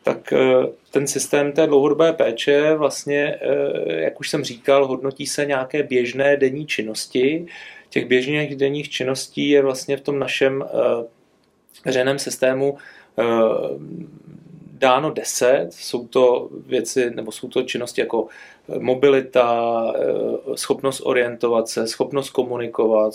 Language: Czech